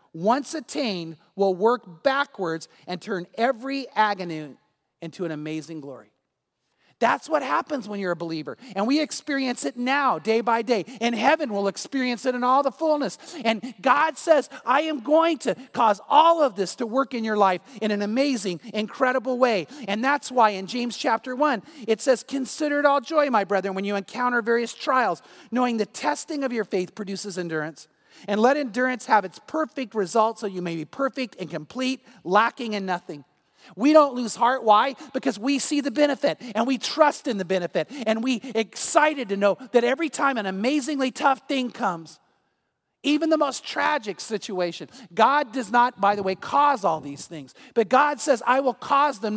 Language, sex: English, male